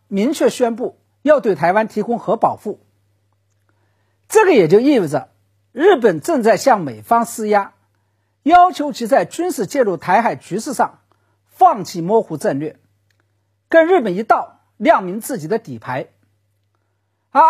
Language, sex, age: Chinese, male, 50-69